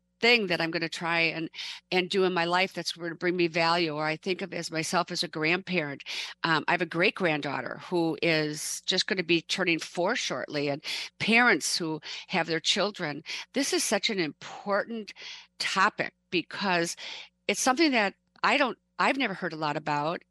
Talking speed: 195 wpm